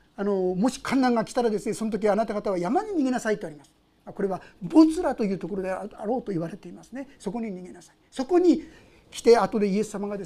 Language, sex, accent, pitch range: Japanese, male, native, 210-325 Hz